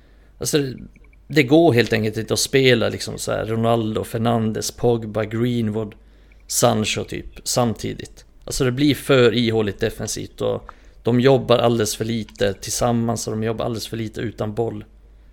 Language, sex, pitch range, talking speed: Swedish, male, 105-120 Hz, 155 wpm